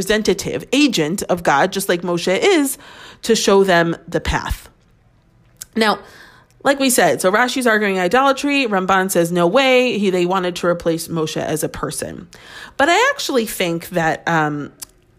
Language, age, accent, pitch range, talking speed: English, 30-49, American, 170-240 Hz, 155 wpm